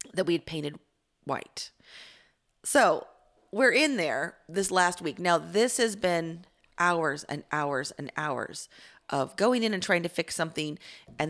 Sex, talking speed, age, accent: female, 160 wpm, 30-49, American